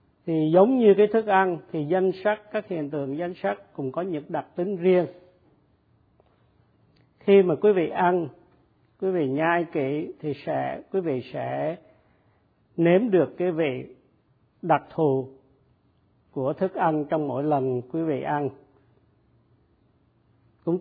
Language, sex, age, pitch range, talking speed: Vietnamese, male, 50-69, 135-185 Hz, 145 wpm